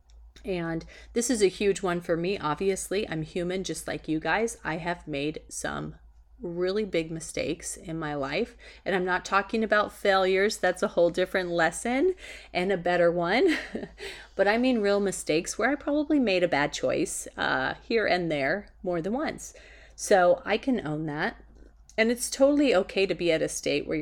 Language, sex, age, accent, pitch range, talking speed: English, female, 30-49, American, 155-200 Hz, 185 wpm